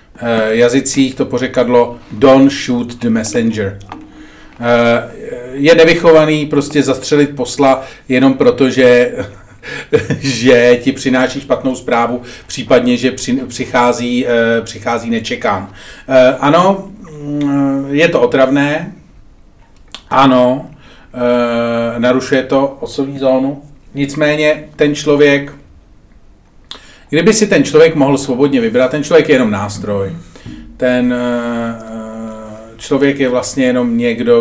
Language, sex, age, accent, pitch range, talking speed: Czech, male, 40-59, native, 125-150 Hz, 95 wpm